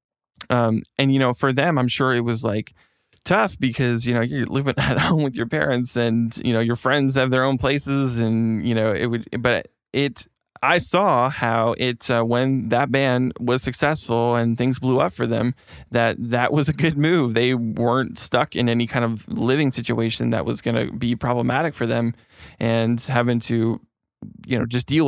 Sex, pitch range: male, 115-130 Hz